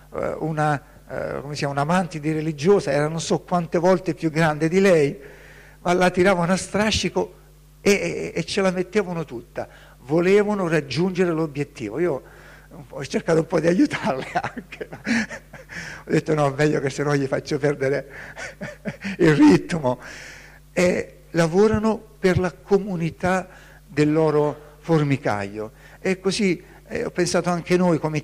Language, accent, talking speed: Italian, native, 140 wpm